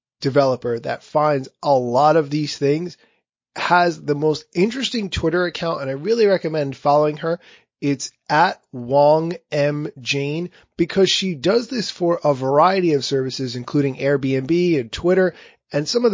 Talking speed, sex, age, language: 155 wpm, male, 30-49, English